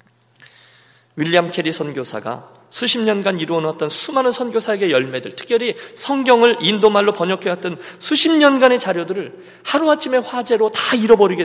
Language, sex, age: Korean, male, 40-59